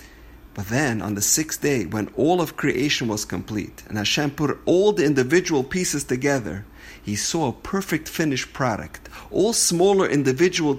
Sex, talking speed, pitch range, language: male, 160 wpm, 105-145 Hz, English